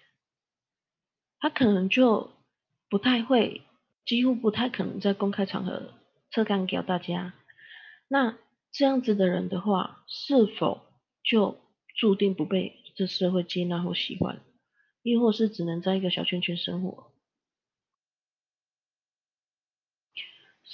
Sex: female